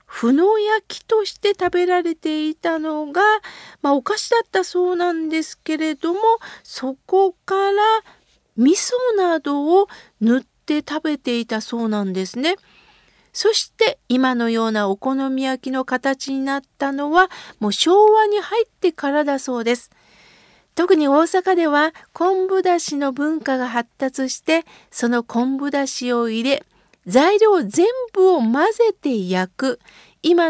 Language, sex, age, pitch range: Japanese, female, 50-69, 250-370 Hz